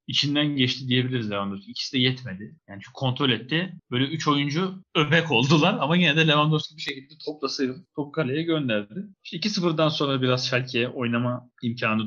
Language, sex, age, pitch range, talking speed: Turkish, male, 40-59, 120-160 Hz, 165 wpm